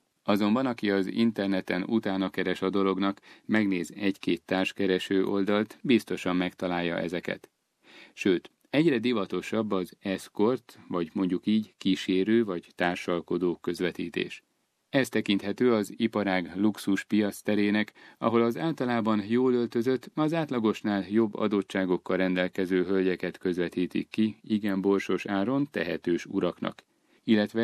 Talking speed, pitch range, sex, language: 115 wpm, 95-115 Hz, male, Hungarian